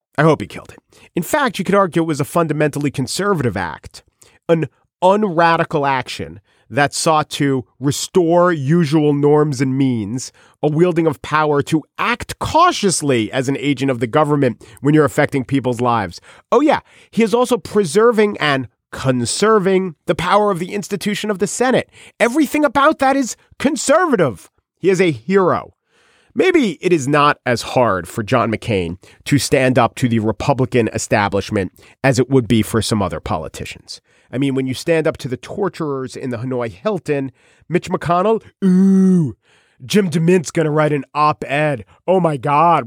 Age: 40-59